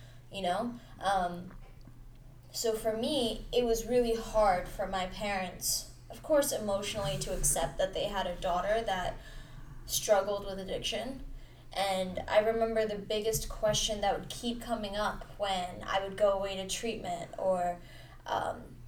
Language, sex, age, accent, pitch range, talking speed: English, female, 10-29, American, 145-225 Hz, 150 wpm